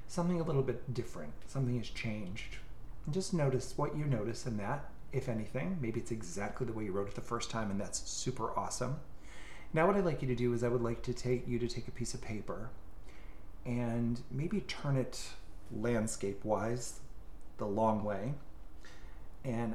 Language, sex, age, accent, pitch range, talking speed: English, male, 30-49, American, 100-125 Hz, 190 wpm